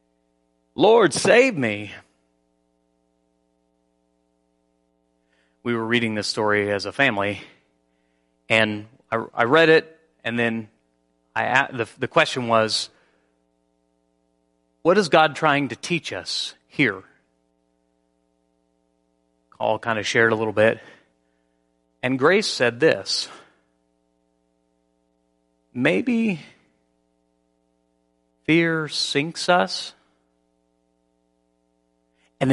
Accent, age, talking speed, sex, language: American, 30-49, 85 wpm, male, English